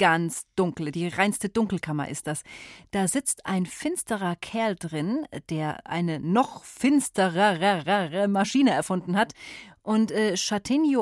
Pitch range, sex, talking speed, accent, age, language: 165-235 Hz, female, 120 wpm, German, 30-49, German